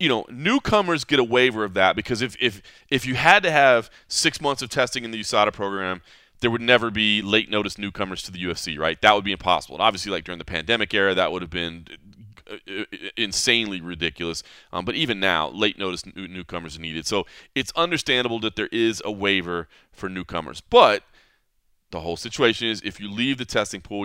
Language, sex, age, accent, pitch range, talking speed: English, male, 30-49, American, 95-125 Hz, 205 wpm